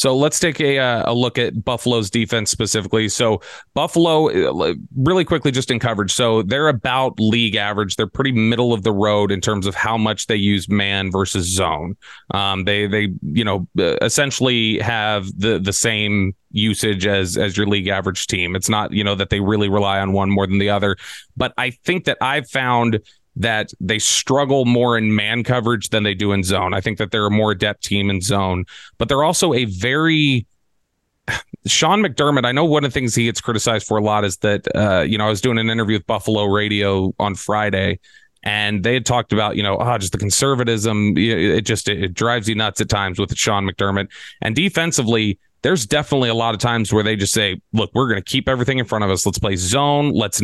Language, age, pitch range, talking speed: English, 30-49, 100-125 Hz, 215 wpm